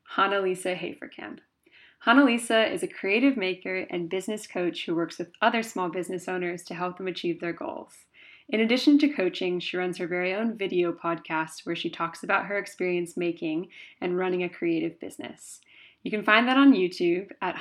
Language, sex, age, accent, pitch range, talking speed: English, female, 20-39, American, 180-225 Hz, 185 wpm